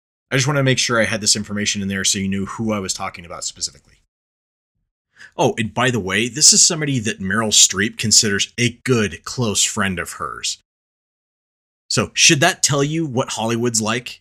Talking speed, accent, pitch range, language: 200 wpm, American, 105-135 Hz, English